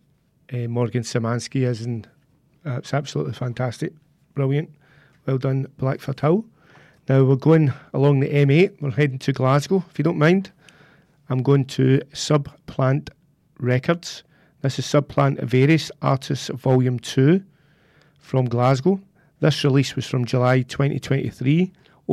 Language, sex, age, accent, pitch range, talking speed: English, male, 40-59, British, 130-150 Hz, 130 wpm